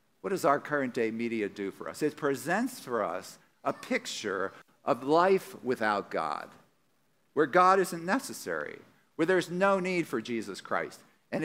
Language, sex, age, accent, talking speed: English, male, 50-69, American, 155 wpm